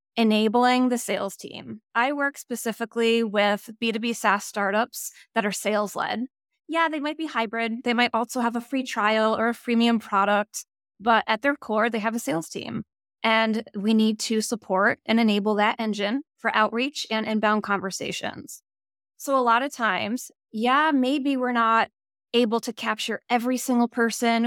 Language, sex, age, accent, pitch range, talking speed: English, female, 20-39, American, 215-250 Hz, 170 wpm